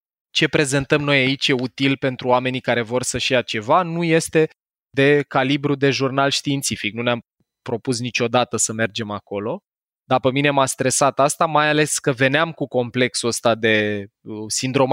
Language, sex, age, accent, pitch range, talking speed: Romanian, male, 20-39, native, 115-140 Hz, 160 wpm